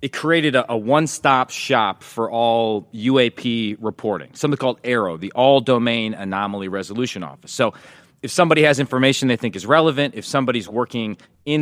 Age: 30-49